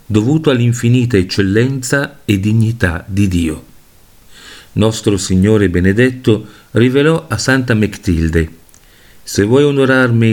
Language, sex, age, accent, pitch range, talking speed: Italian, male, 50-69, native, 95-120 Hz, 100 wpm